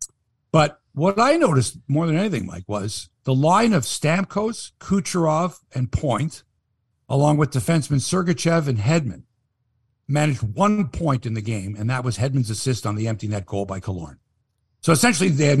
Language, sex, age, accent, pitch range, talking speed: English, male, 60-79, American, 110-150 Hz, 170 wpm